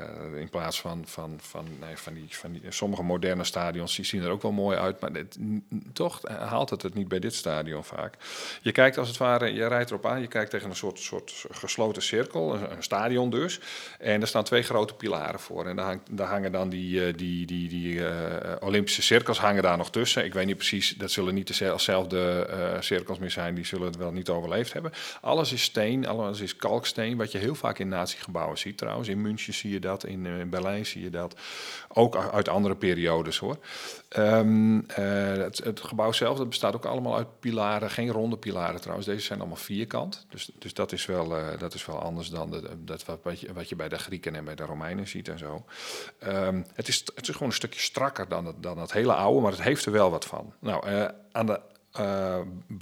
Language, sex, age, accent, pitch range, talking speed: Dutch, male, 40-59, Dutch, 90-105 Hz, 230 wpm